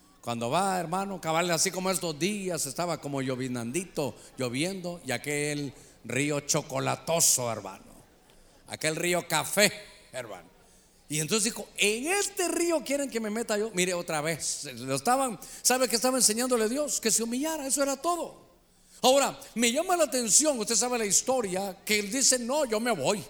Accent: Mexican